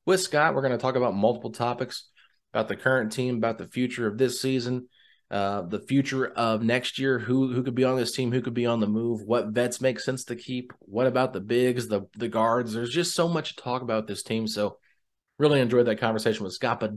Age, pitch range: 30-49, 115-140 Hz